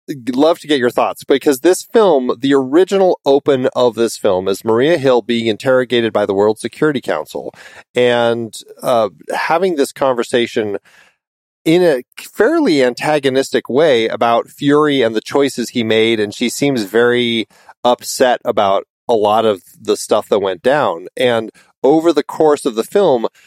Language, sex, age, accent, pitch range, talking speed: English, male, 40-59, American, 115-145 Hz, 160 wpm